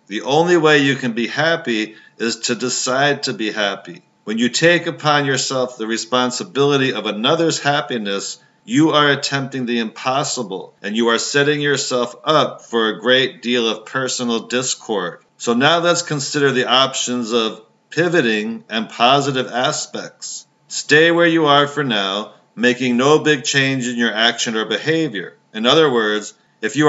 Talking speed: 160 wpm